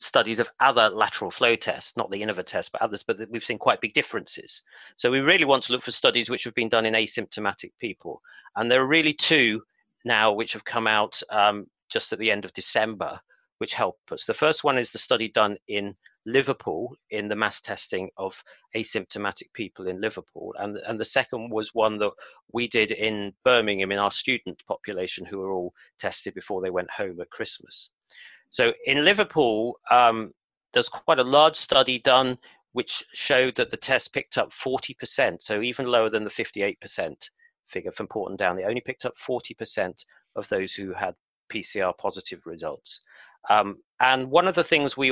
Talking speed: 195 wpm